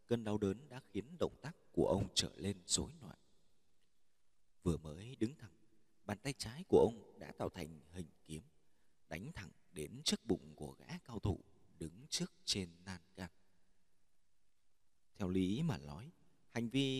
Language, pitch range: Vietnamese, 90-120 Hz